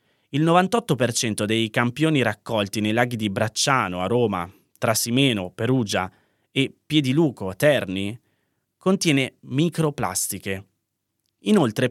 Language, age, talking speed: Italian, 20-39, 100 wpm